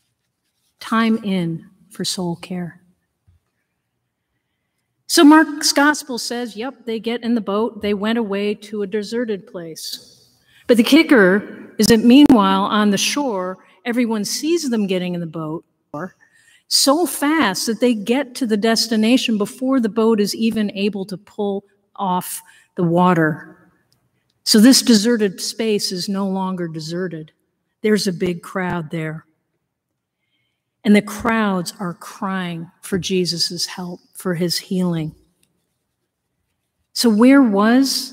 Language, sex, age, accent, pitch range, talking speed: English, female, 50-69, American, 180-230 Hz, 130 wpm